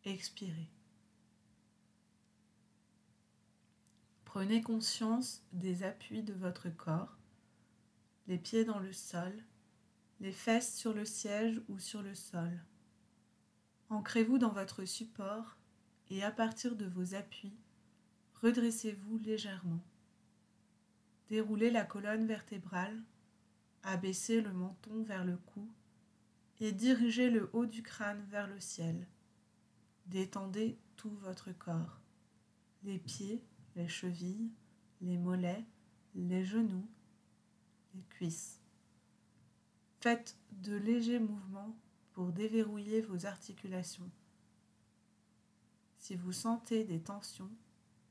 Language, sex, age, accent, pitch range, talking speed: French, female, 30-49, French, 180-220 Hz, 100 wpm